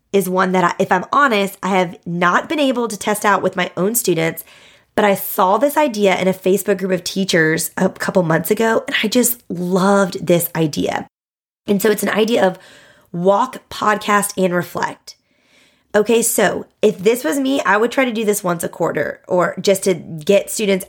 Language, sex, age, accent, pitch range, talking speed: English, female, 20-39, American, 175-210 Hz, 200 wpm